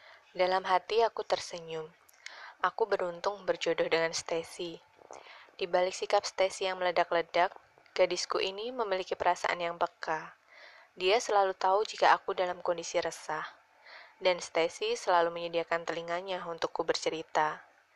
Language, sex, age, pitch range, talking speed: Indonesian, female, 20-39, 175-200 Hz, 120 wpm